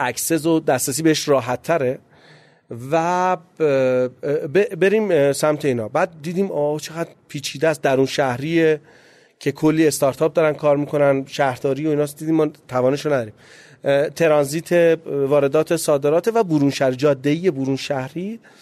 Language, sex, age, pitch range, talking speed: Persian, male, 30-49, 130-165 Hz, 125 wpm